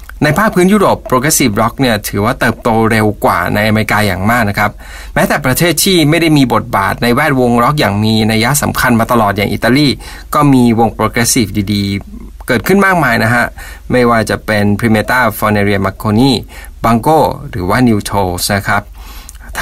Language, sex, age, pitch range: Thai, male, 20-39, 105-130 Hz